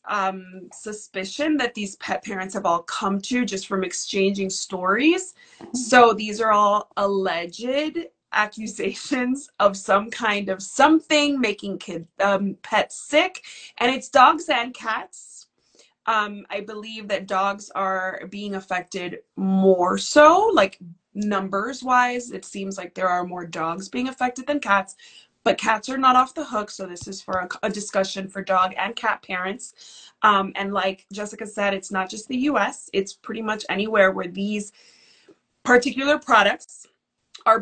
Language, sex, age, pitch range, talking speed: English, female, 20-39, 195-240 Hz, 155 wpm